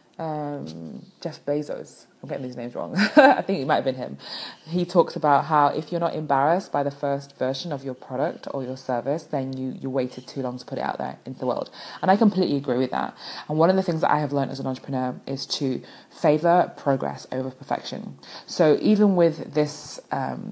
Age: 20-39